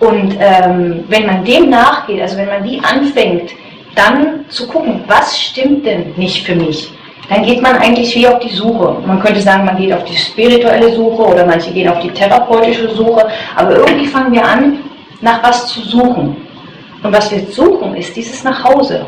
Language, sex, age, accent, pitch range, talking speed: German, female, 30-49, German, 185-240 Hz, 185 wpm